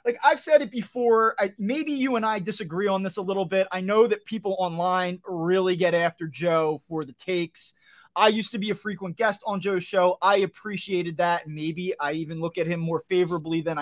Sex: male